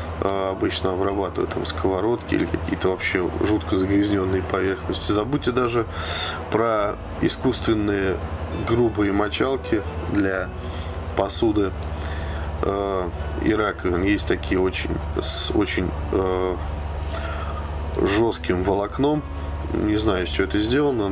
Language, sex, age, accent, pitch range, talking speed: Russian, male, 20-39, native, 80-105 Hz, 100 wpm